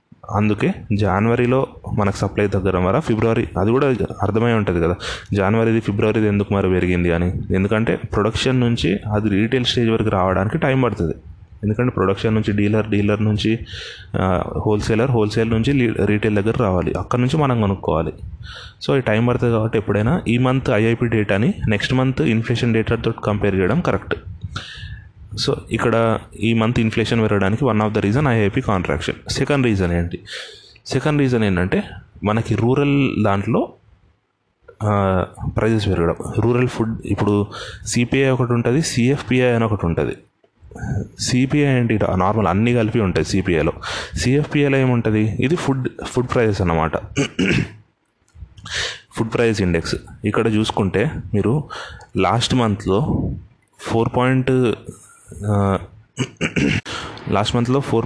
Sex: male